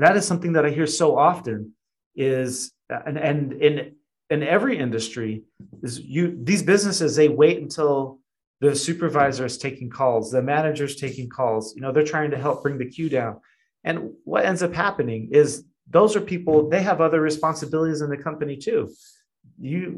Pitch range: 130-155 Hz